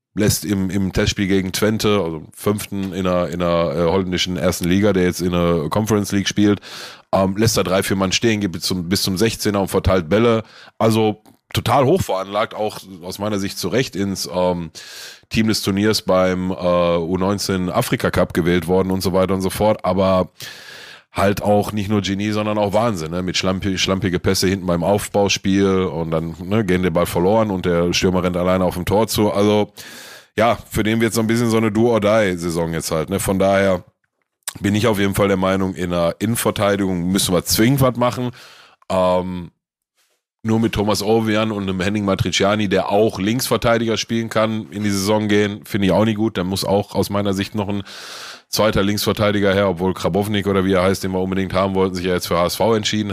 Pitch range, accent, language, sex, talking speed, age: 90-105 Hz, German, German, male, 205 wpm, 30-49